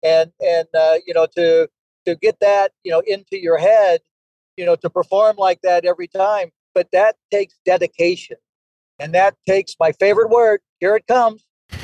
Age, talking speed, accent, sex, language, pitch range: 50-69, 175 wpm, American, male, English, 150-185 Hz